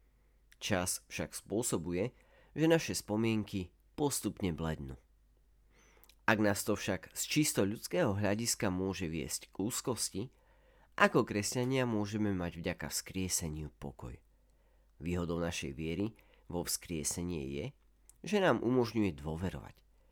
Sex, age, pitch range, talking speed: male, 40-59, 80-110 Hz, 110 wpm